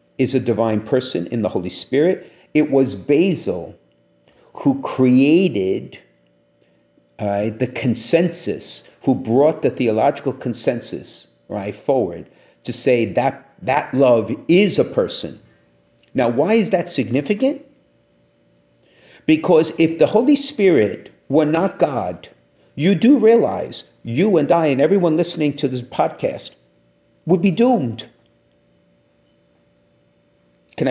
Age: 50-69